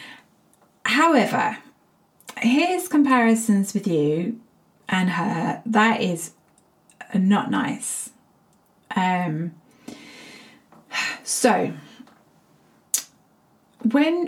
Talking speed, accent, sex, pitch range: 60 wpm, British, female, 200-255 Hz